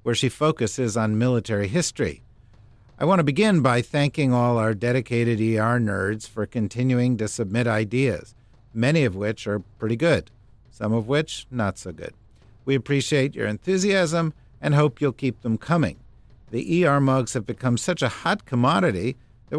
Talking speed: 165 wpm